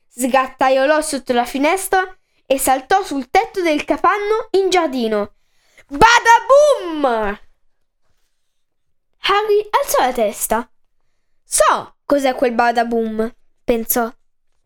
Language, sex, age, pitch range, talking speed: Italian, female, 10-29, 230-340 Hz, 90 wpm